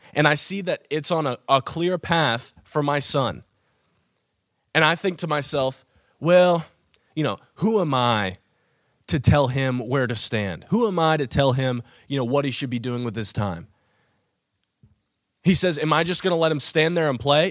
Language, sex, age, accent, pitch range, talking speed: English, male, 20-39, American, 135-170 Hz, 200 wpm